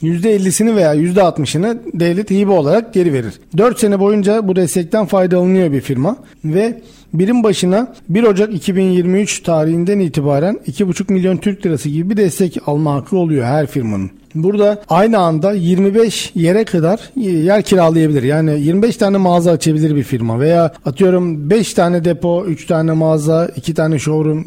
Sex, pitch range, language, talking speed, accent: male, 150-195 Hz, Turkish, 150 wpm, native